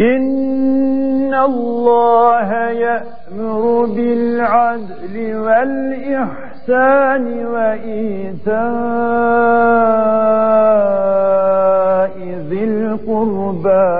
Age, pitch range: 50-69, 180-235 Hz